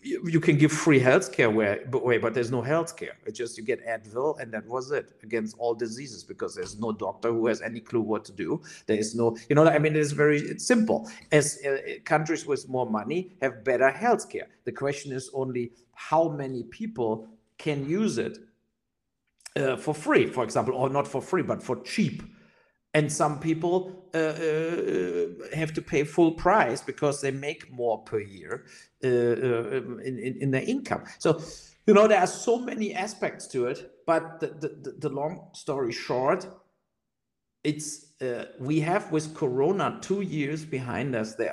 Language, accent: English, German